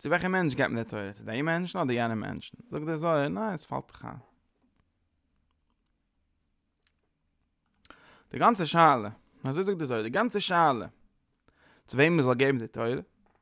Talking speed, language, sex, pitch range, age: 110 wpm, English, male, 115-145 Hz, 20-39